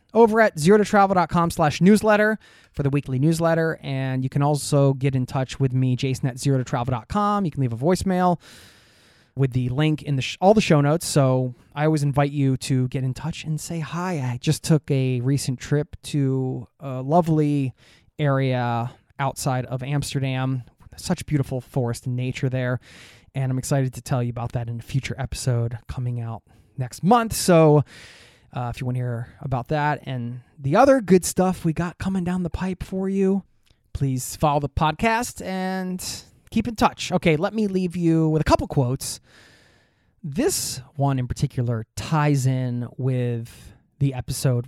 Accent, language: American, English